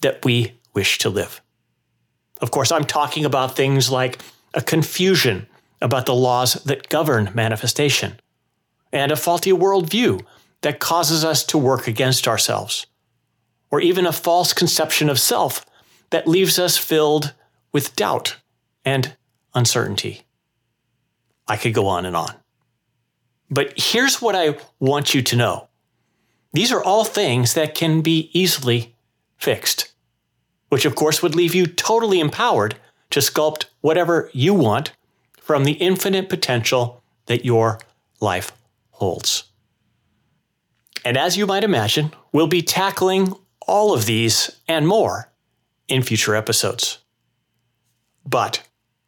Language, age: English, 40-59